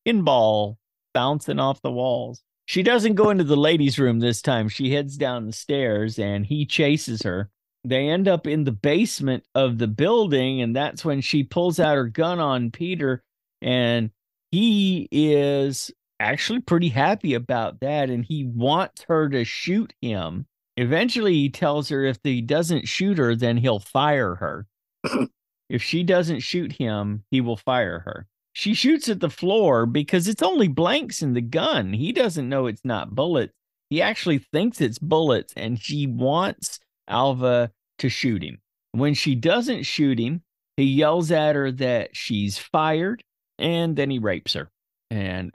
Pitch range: 115-155 Hz